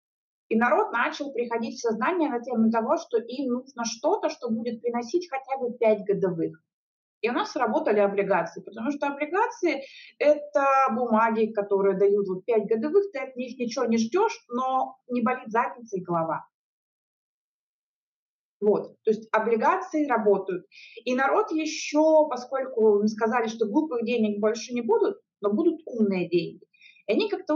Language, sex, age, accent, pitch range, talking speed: Russian, female, 30-49, native, 205-280 Hz, 150 wpm